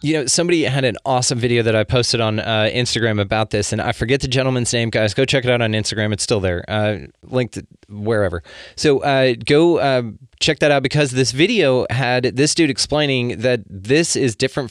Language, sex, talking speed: English, male, 210 wpm